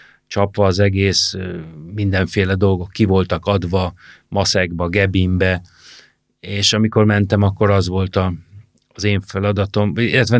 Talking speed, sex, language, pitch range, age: 110 wpm, male, Hungarian, 90-105 Hz, 40-59